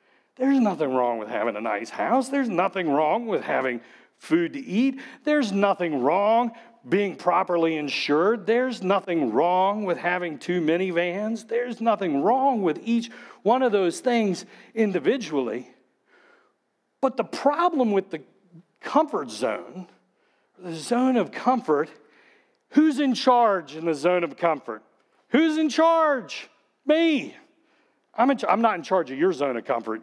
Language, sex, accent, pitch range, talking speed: English, male, American, 185-270 Hz, 150 wpm